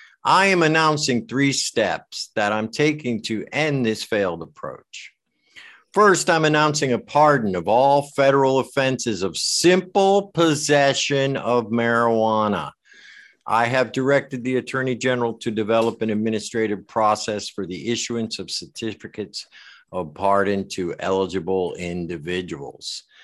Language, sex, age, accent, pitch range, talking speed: English, male, 50-69, American, 100-135 Hz, 125 wpm